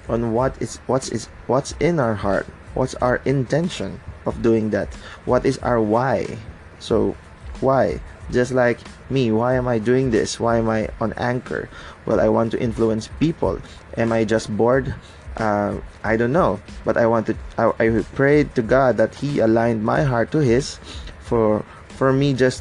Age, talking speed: 20-39, 180 wpm